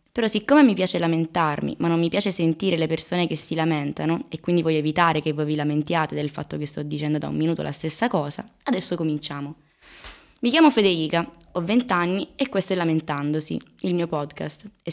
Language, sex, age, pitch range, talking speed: Italian, female, 20-39, 160-205 Hz, 195 wpm